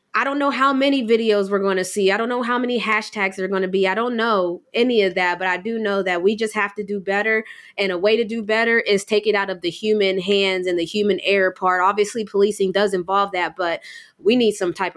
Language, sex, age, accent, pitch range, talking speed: English, female, 20-39, American, 200-265 Hz, 270 wpm